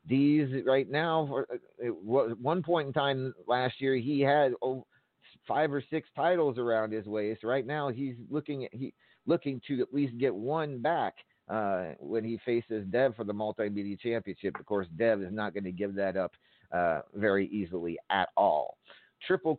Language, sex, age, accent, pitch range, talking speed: English, male, 40-59, American, 110-145 Hz, 175 wpm